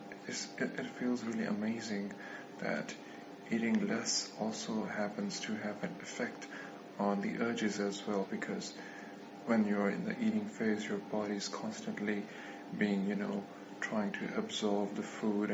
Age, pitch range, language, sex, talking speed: 20-39, 100-105 Hz, English, male, 155 wpm